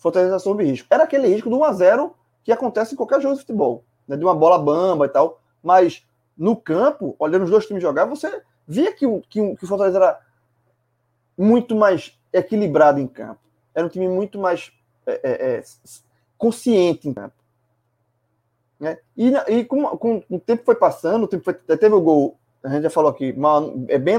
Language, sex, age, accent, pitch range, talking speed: Portuguese, male, 20-39, Brazilian, 140-220 Hz, 195 wpm